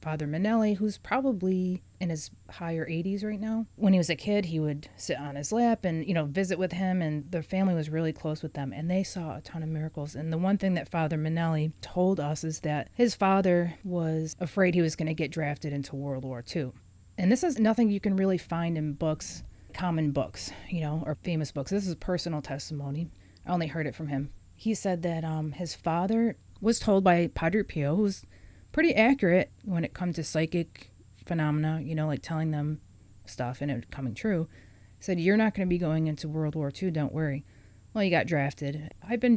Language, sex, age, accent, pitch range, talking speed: English, female, 30-49, American, 150-190 Hz, 220 wpm